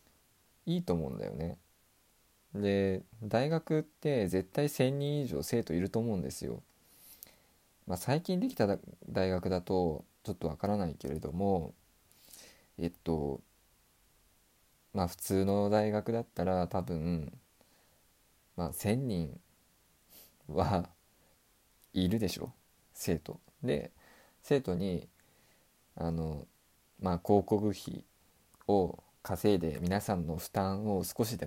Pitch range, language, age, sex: 85-110 Hz, Japanese, 20-39, male